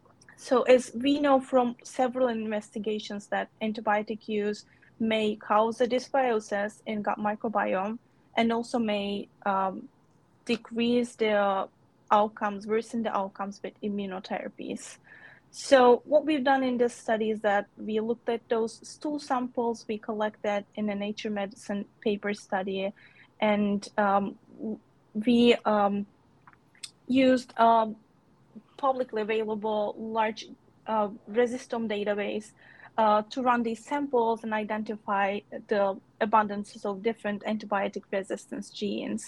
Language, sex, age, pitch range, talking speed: English, female, 20-39, 210-245 Hz, 120 wpm